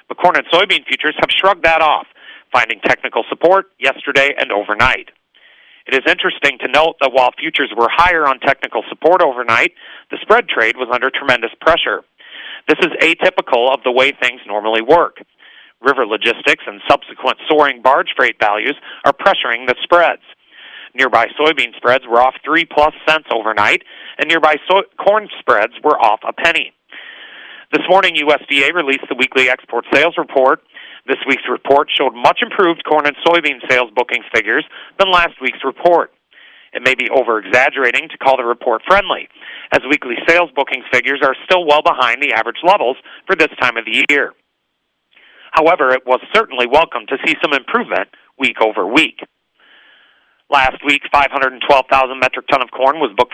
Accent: American